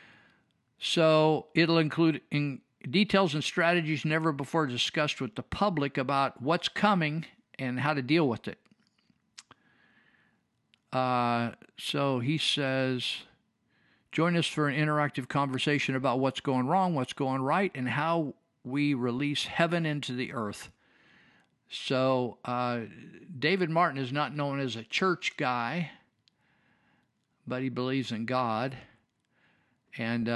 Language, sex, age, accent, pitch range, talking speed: English, male, 50-69, American, 130-165 Hz, 125 wpm